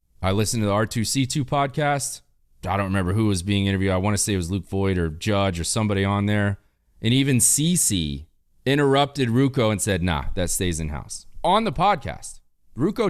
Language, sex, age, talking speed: English, male, 30-49, 190 wpm